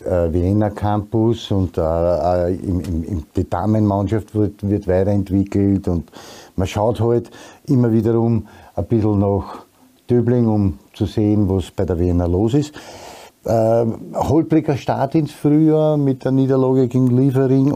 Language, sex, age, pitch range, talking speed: German, male, 50-69, 90-110 Hz, 120 wpm